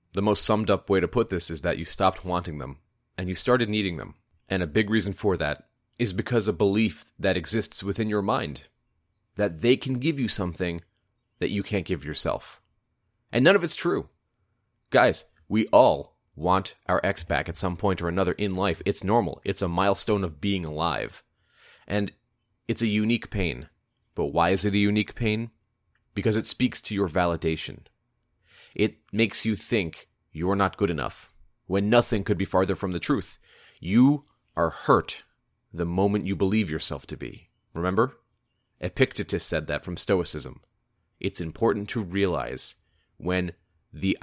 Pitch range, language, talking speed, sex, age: 85-110 Hz, English, 175 wpm, male, 30-49